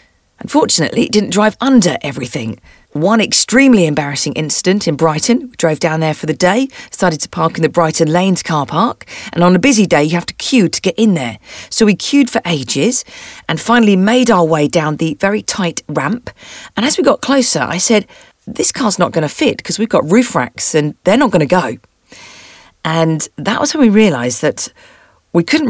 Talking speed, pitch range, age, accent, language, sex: 210 wpm, 160-225 Hz, 40-59, British, English, female